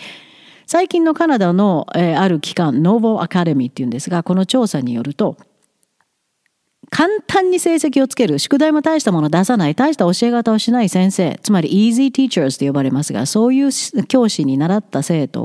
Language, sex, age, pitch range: Japanese, female, 50-69, 165-255 Hz